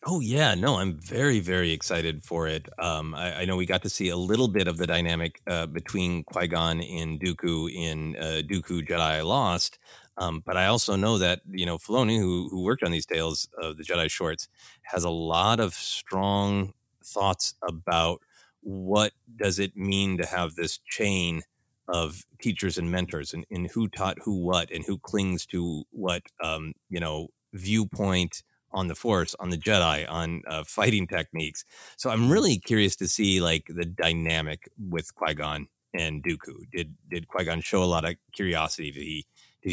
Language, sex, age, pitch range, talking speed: English, male, 30-49, 80-100 Hz, 180 wpm